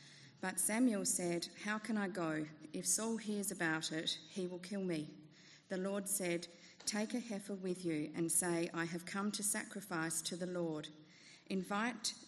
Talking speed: 170 wpm